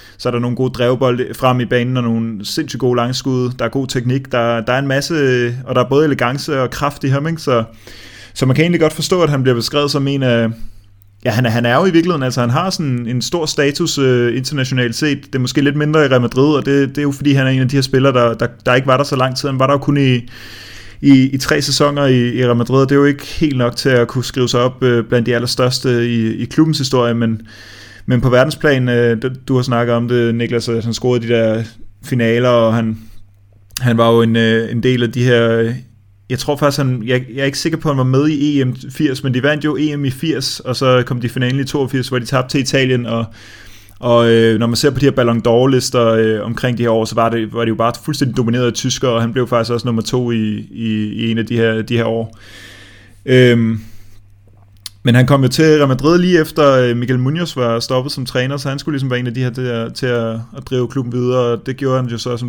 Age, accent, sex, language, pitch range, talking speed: 20-39, native, male, Danish, 115-135 Hz, 260 wpm